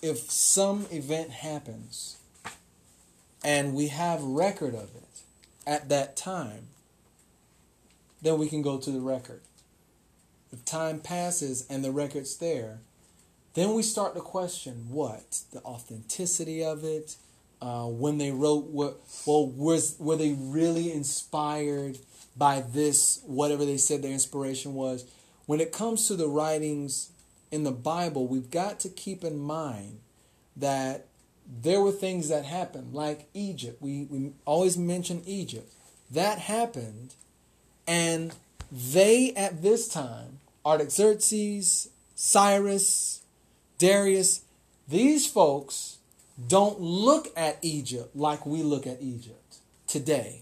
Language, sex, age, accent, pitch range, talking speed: English, male, 30-49, American, 135-175 Hz, 125 wpm